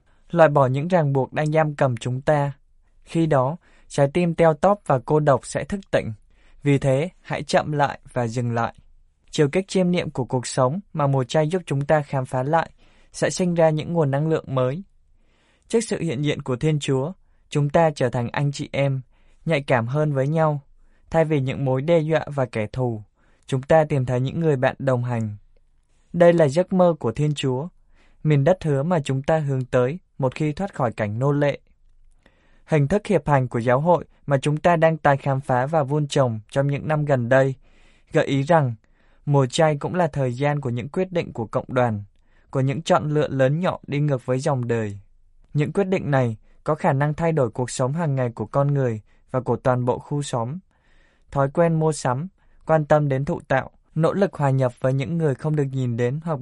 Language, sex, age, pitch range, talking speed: Vietnamese, male, 20-39, 130-160 Hz, 220 wpm